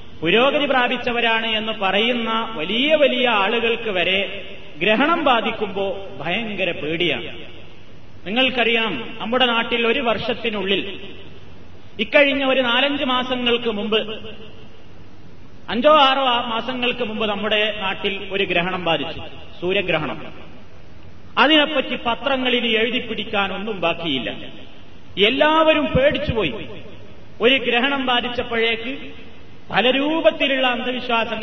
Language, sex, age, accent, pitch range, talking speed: Malayalam, male, 30-49, native, 200-255 Hz, 85 wpm